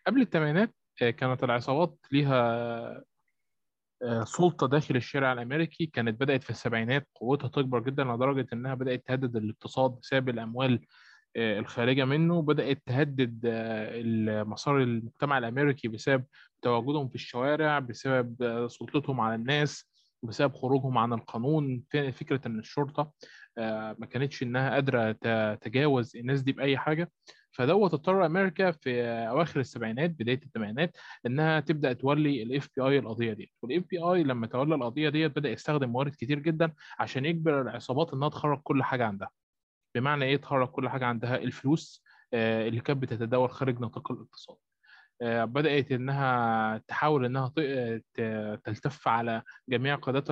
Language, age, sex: Arabic, 20-39, male